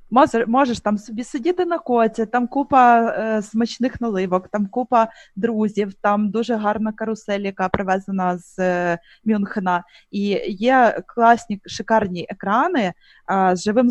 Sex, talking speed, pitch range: female, 140 wpm, 195-240 Hz